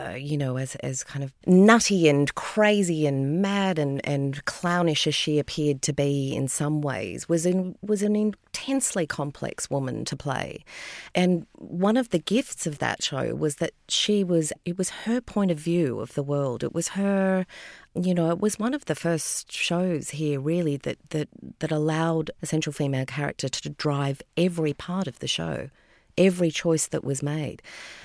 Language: English